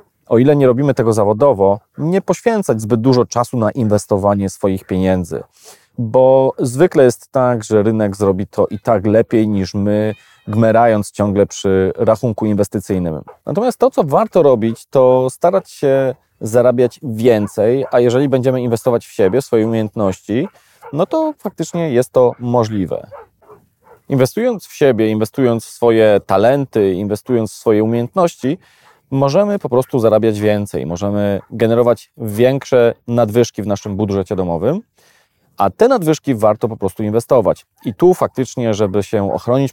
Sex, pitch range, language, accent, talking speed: male, 105-135 Hz, Polish, native, 145 wpm